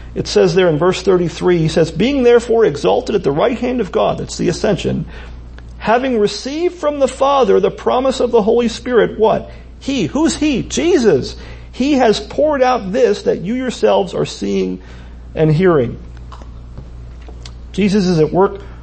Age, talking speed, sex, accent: 40-59, 165 wpm, male, American